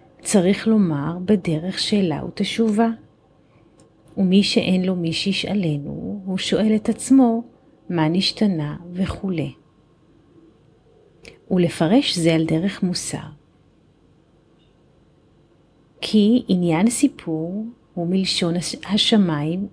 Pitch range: 165-205 Hz